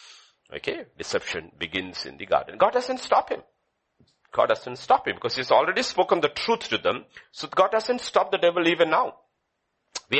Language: English